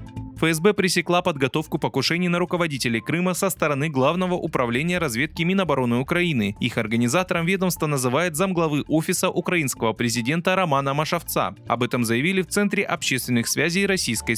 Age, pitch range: 20-39, 125-180 Hz